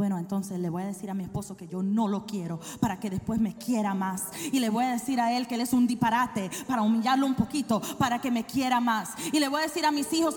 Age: 30-49